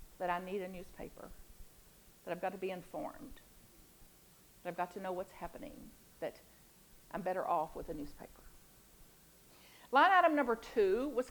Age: 50-69